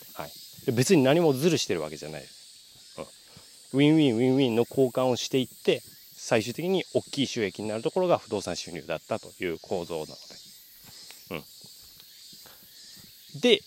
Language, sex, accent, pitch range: Japanese, male, native, 120-165 Hz